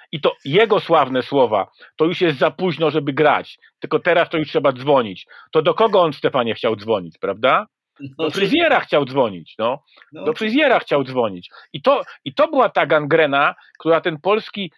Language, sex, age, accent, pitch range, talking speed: Polish, male, 50-69, native, 145-180 Hz, 185 wpm